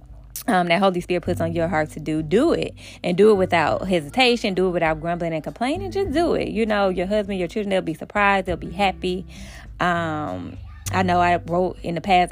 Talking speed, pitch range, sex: 225 wpm, 160-190 Hz, female